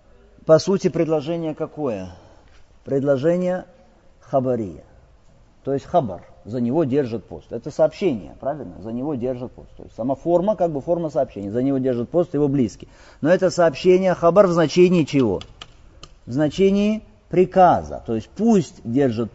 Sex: male